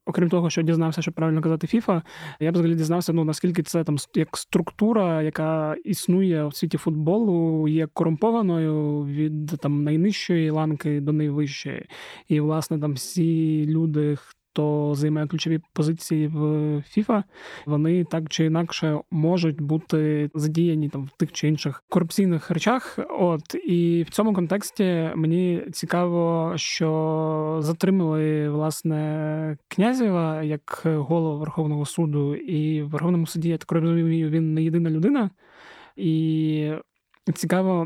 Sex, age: male, 20-39